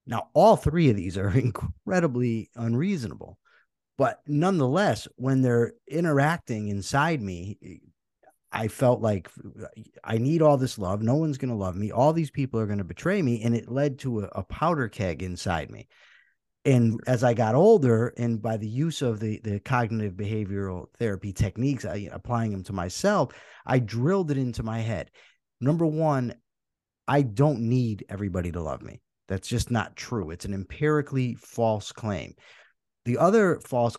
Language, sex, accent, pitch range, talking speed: English, male, American, 110-145 Hz, 165 wpm